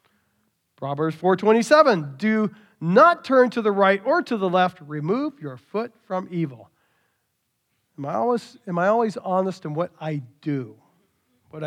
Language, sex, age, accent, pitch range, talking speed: English, male, 40-59, American, 170-235 Hz, 150 wpm